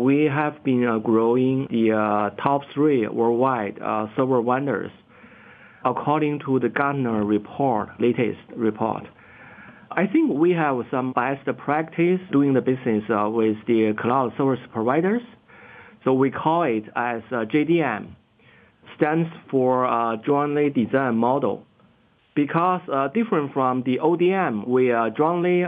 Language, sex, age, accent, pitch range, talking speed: English, male, 50-69, Chinese, 115-150 Hz, 120 wpm